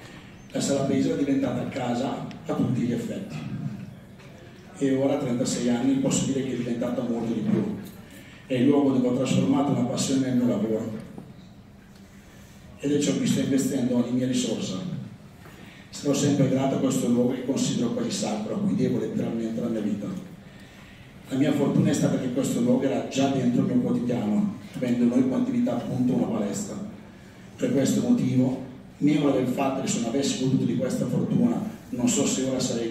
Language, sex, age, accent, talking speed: Italian, male, 40-59, native, 185 wpm